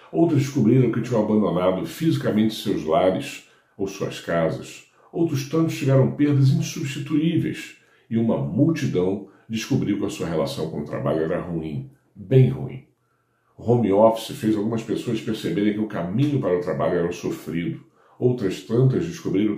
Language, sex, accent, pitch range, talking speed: Portuguese, male, Brazilian, 100-135 Hz, 145 wpm